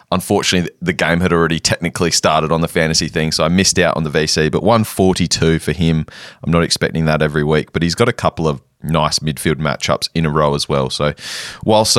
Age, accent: 20-39, Australian